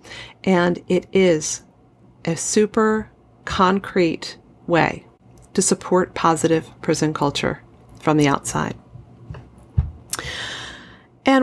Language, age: English, 40-59